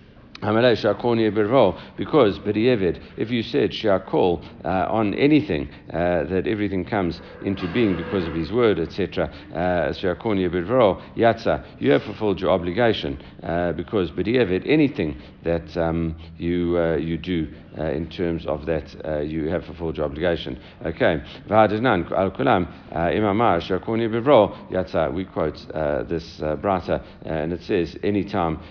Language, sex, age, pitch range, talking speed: English, male, 60-79, 85-105 Hz, 120 wpm